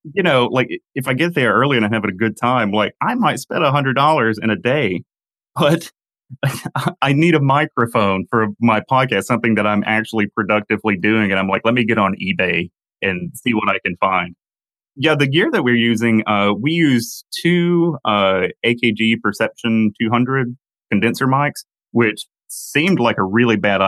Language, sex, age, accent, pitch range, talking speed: English, male, 30-49, American, 95-125 Hz, 180 wpm